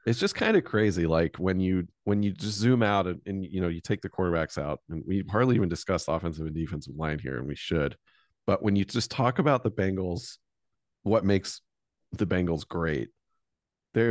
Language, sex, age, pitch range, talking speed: English, male, 40-59, 85-115 Hz, 210 wpm